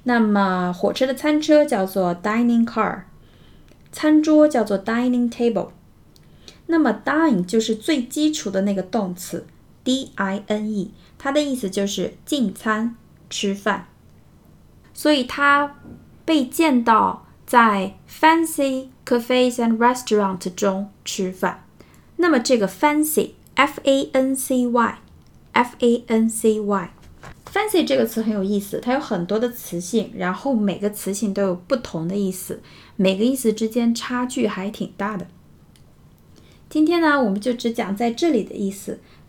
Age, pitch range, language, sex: 20-39, 200-265 Hz, Chinese, female